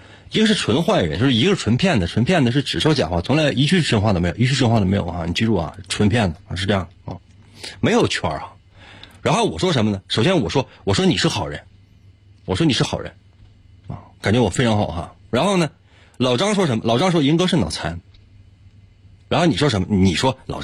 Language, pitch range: Chinese, 95-145 Hz